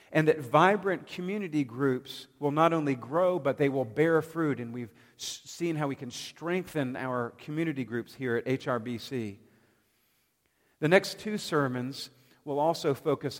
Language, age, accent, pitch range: English, 50-69, American, 120-155 Hz